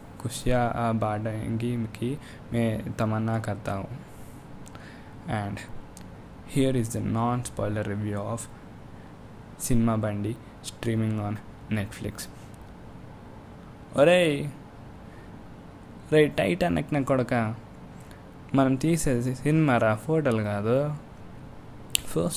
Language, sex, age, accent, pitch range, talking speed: Telugu, male, 20-39, native, 110-120 Hz, 80 wpm